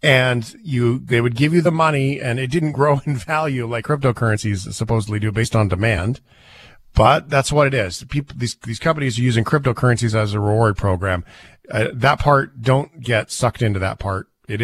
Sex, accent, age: male, American, 40-59